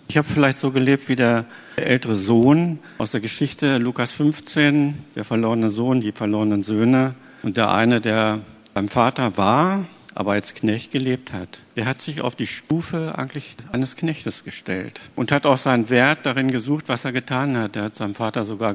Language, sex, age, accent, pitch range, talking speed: German, male, 50-69, German, 105-130 Hz, 185 wpm